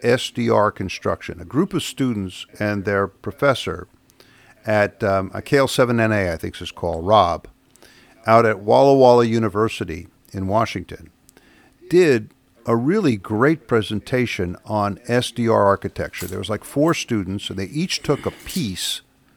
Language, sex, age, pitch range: English, male, 50-69, 100-125 Hz